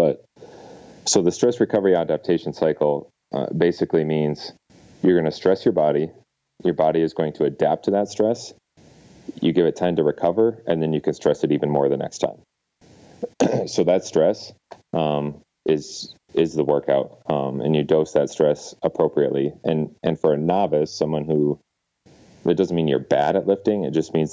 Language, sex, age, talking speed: English, male, 30-49, 185 wpm